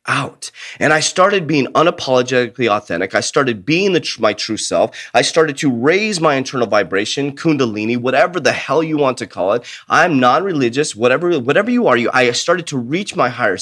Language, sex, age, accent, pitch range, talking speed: English, male, 30-49, American, 125-180 Hz, 190 wpm